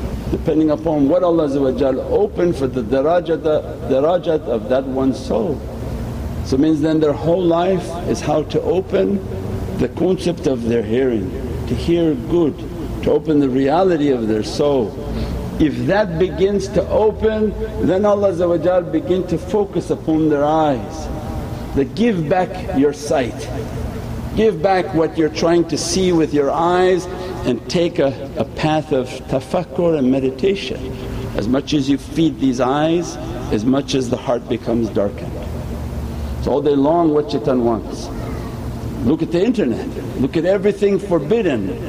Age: 60-79